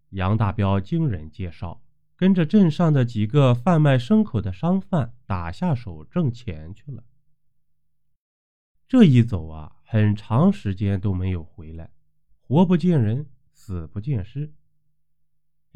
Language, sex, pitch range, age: Chinese, male, 95-150 Hz, 20-39